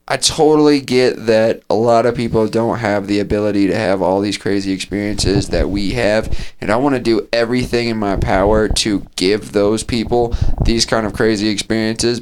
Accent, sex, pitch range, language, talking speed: American, male, 100-120 Hz, English, 190 wpm